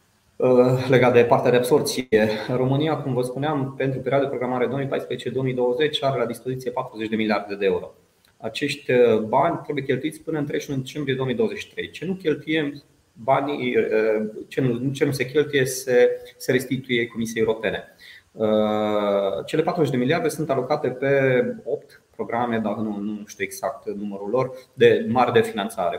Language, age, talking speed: Romanian, 30-49, 150 wpm